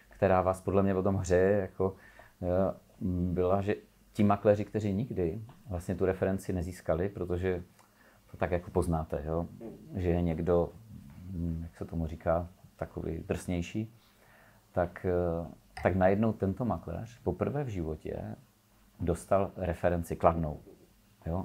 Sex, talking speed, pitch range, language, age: male, 130 wpm, 90-105 Hz, Czech, 40-59